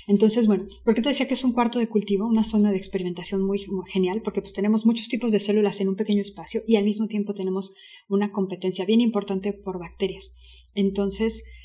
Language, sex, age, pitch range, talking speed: Spanish, female, 30-49, 190-215 Hz, 210 wpm